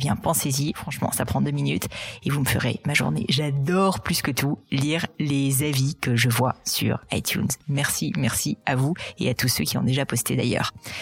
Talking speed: 200 wpm